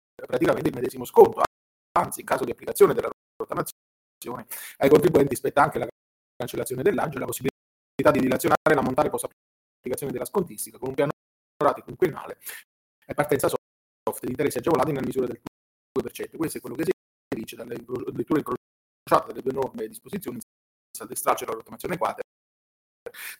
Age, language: 30-49, Italian